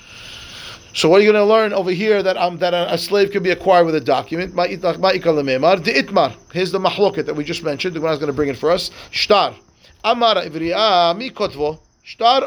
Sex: male